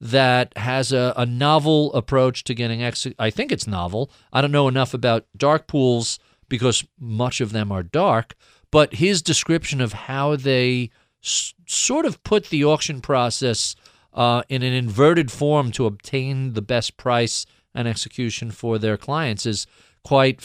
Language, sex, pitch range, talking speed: English, male, 115-145 Hz, 160 wpm